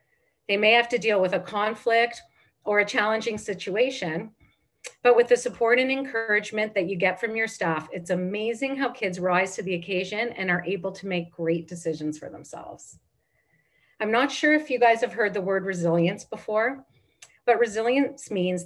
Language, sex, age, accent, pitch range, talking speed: English, female, 40-59, American, 175-230 Hz, 180 wpm